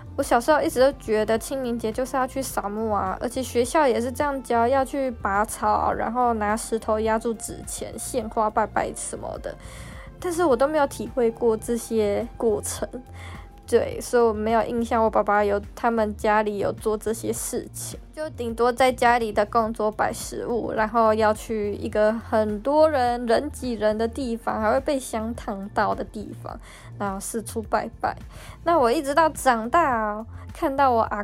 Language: Chinese